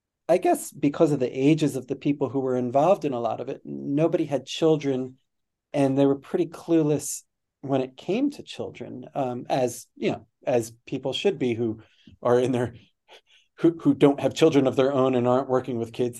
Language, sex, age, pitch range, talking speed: English, male, 40-59, 125-150 Hz, 205 wpm